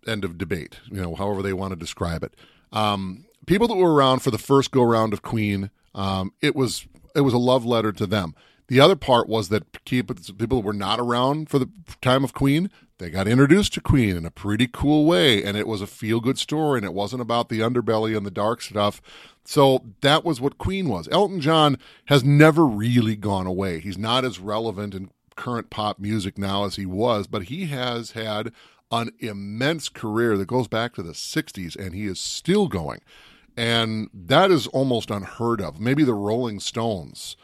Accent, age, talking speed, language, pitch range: American, 30-49, 200 wpm, English, 100-130 Hz